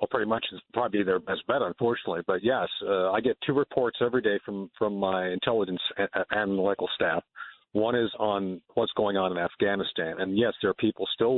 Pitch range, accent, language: 95-125 Hz, American, English